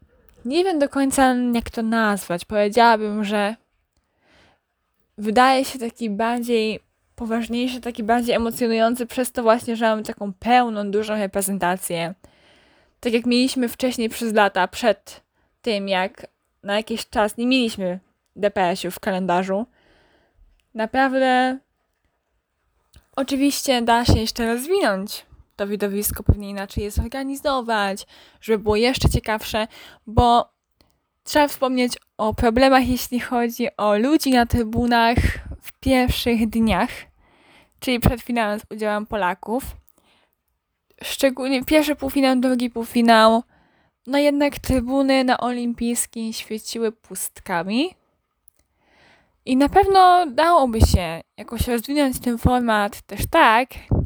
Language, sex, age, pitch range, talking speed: Polish, female, 10-29, 215-255 Hz, 115 wpm